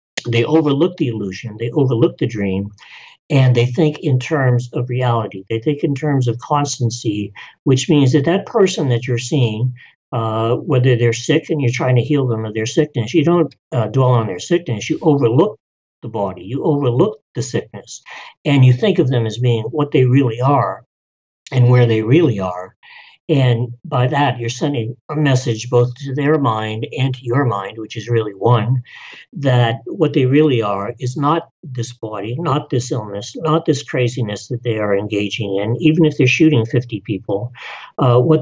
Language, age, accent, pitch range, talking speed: English, 60-79, American, 115-150 Hz, 185 wpm